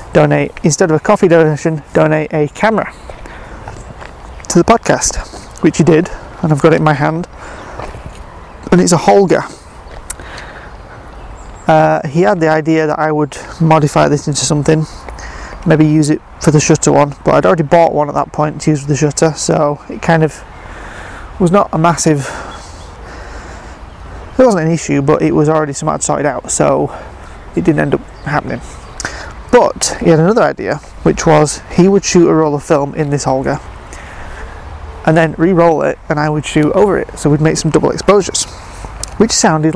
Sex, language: male, English